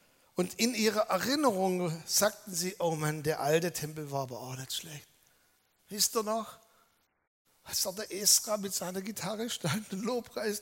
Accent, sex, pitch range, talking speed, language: German, male, 170-220 Hz, 165 wpm, German